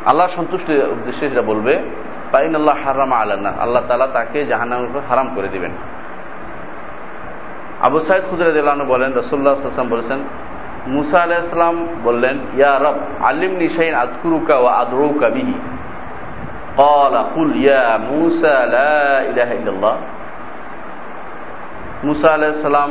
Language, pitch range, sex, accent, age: Bengali, 140-165 Hz, male, native, 40-59